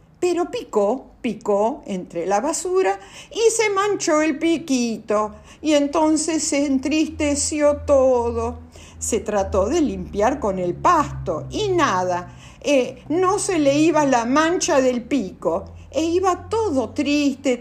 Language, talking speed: Spanish, 130 wpm